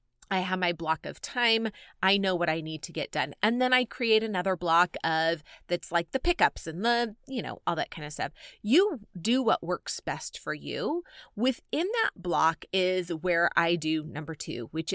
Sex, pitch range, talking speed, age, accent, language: female, 165-235 Hz, 205 wpm, 30-49, American, English